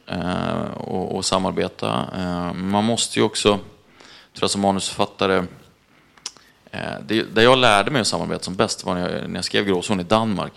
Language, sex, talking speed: Swedish, male, 180 wpm